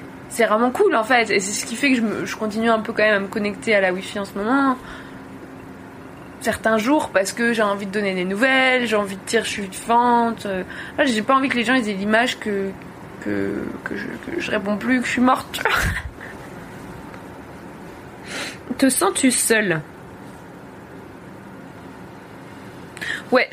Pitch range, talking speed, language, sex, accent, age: 195-250 Hz, 175 wpm, French, female, French, 20-39